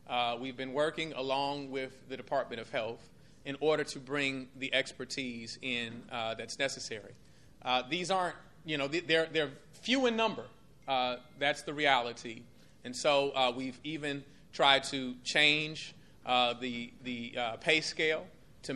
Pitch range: 130-170 Hz